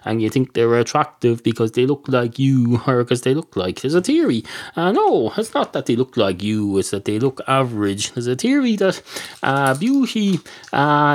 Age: 30-49